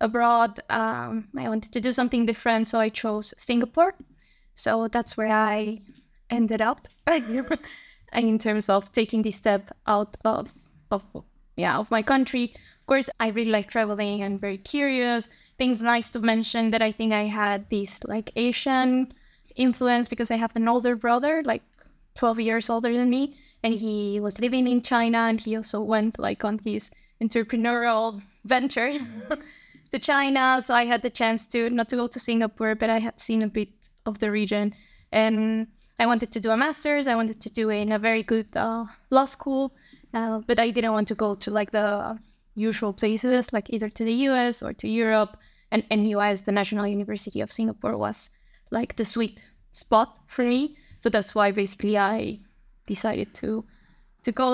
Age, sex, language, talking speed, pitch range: 10-29, female, English, 180 wpm, 215-245 Hz